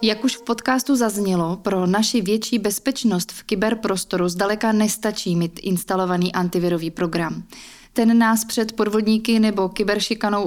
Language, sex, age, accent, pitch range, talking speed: Czech, female, 20-39, native, 190-230 Hz, 130 wpm